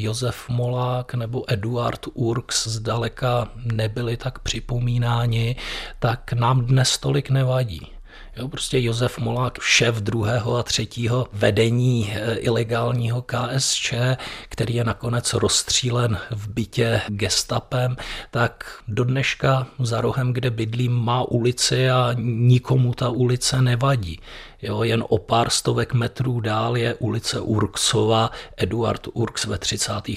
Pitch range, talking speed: 105-120 Hz, 115 wpm